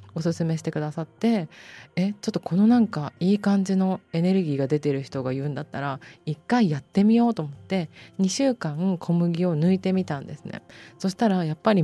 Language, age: Japanese, 20-39